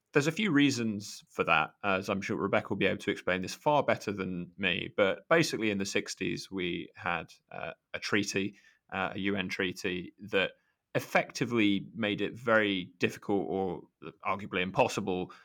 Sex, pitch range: male, 95-110 Hz